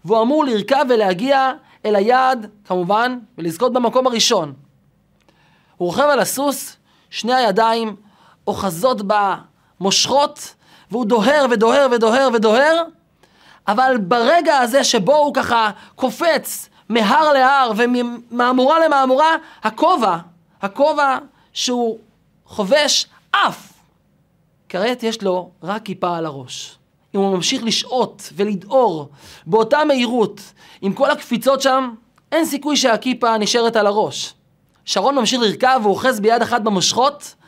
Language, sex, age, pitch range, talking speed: Hebrew, male, 30-49, 205-280 Hz, 115 wpm